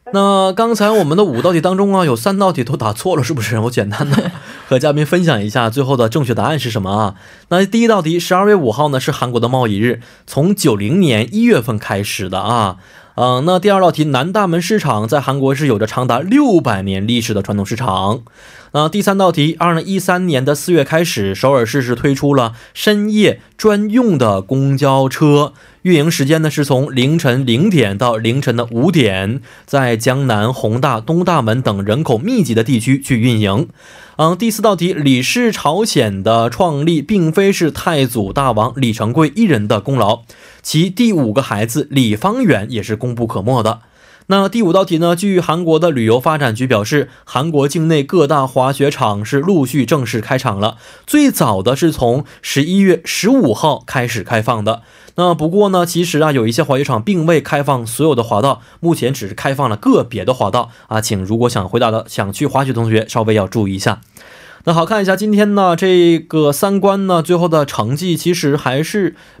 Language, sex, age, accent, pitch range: Korean, male, 20-39, Chinese, 115-175 Hz